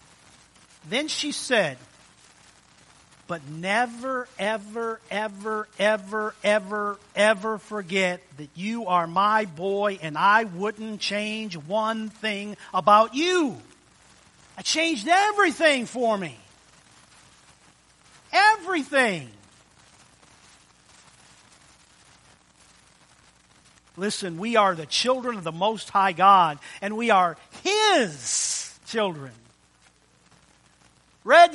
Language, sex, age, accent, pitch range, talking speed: English, male, 50-69, American, 175-245 Hz, 90 wpm